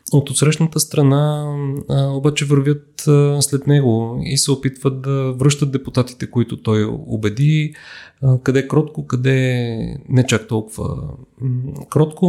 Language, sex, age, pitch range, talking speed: English, male, 30-49, 120-145 Hz, 110 wpm